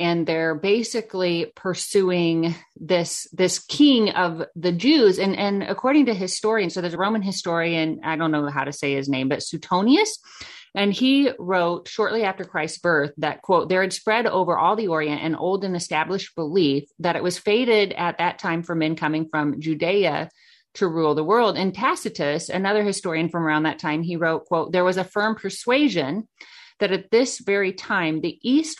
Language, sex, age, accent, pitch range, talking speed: English, female, 30-49, American, 165-215 Hz, 190 wpm